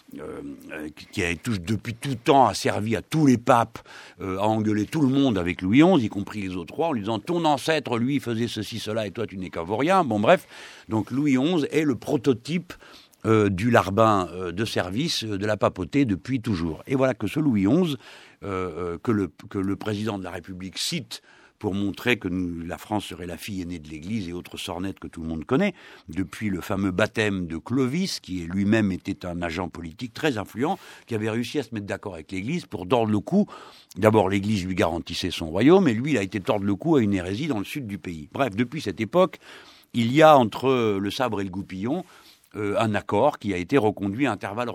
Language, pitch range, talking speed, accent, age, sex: French, 95-125 Hz, 230 wpm, French, 60-79, male